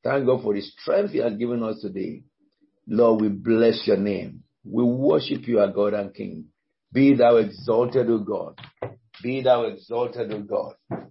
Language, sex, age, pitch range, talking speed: English, male, 60-79, 105-130 Hz, 175 wpm